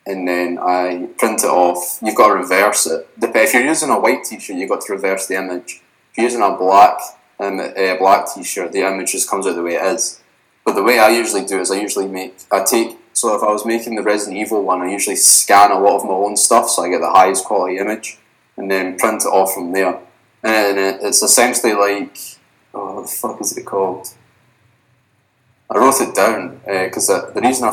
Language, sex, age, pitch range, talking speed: English, male, 20-39, 90-110 Hz, 230 wpm